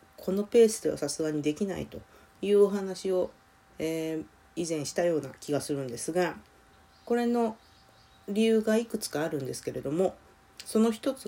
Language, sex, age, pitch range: Japanese, female, 40-59, 150-220 Hz